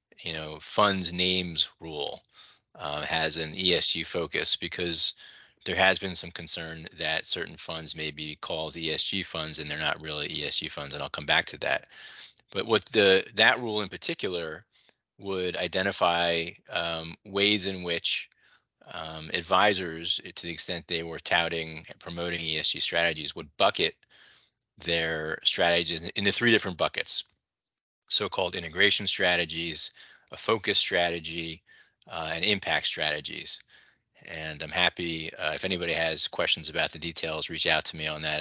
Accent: American